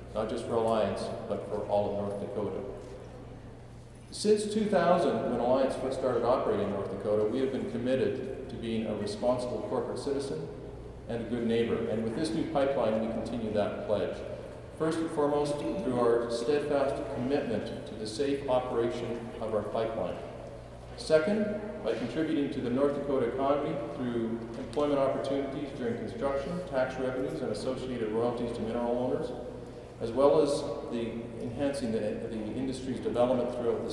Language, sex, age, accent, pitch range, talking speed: English, male, 40-59, American, 110-130 Hz, 155 wpm